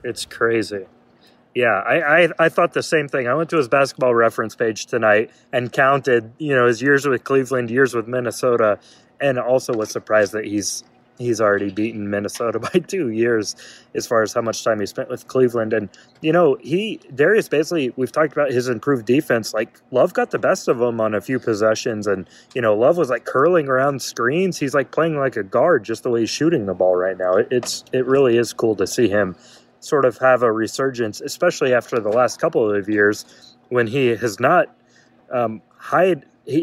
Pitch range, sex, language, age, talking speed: 110-140 Hz, male, English, 30-49, 205 wpm